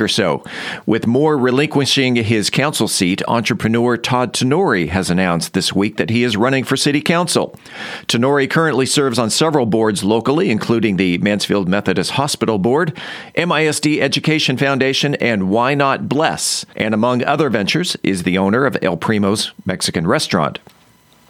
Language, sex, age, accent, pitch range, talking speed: English, male, 50-69, American, 110-150 Hz, 150 wpm